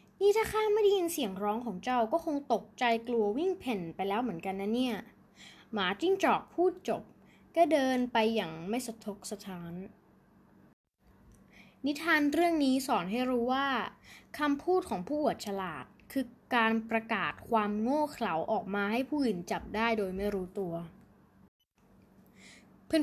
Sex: female